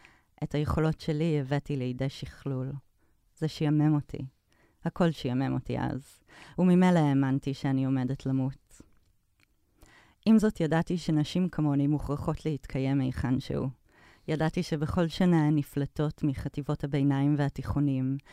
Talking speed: 115 wpm